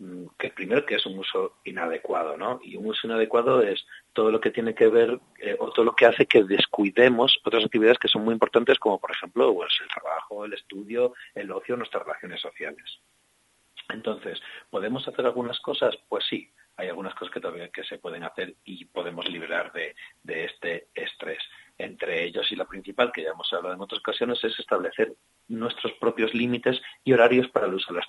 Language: Spanish